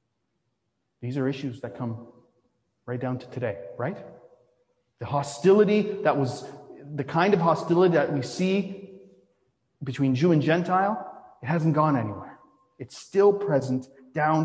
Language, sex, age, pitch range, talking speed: English, male, 30-49, 135-205 Hz, 135 wpm